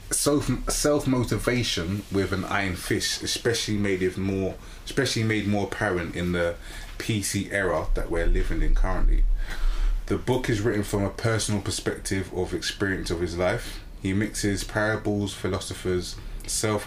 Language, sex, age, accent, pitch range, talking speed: English, male, 20-39, British, 90-110 Hz, 150 wpm